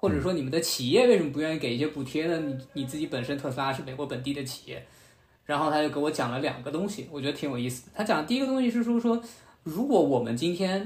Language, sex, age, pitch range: Chinese, male, 20-39, 130-210 Hz